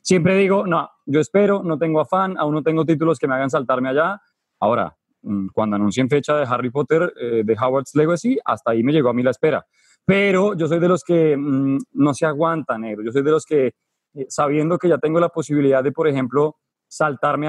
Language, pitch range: Spanish, 140-175 Hz